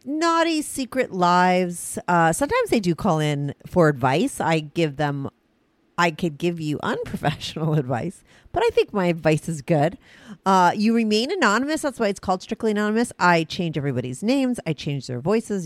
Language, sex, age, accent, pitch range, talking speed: English, female, 40-59, American, 155-220 Hz, 175 wpm